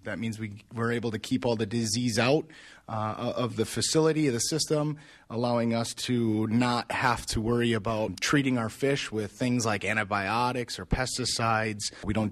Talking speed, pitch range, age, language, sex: 180 wpm, 110-130 Hz, 30-49, English, male